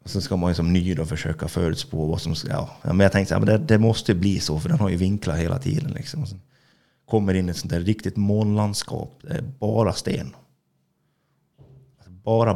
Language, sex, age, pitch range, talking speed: Swedish, male, 30-49, 90-130 Hz, 215 wpm